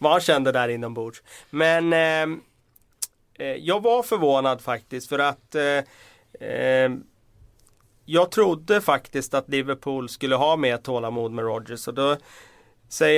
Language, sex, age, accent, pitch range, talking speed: Swedish, male, 30-49, native, 125-150 Hz, 125 wpm